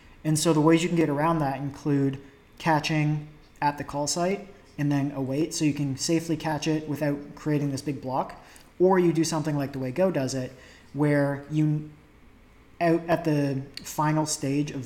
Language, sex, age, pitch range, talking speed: English, male, 30-49, 135-155 Hz, 190 wpm